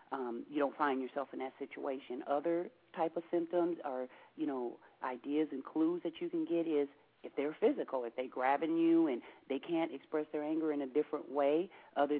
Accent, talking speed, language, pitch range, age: American, 200 wpm, English, 135-170 Hz, 40-59